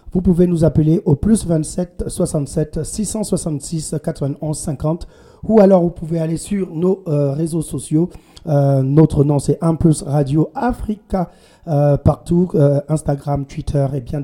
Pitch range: 145-170 Hz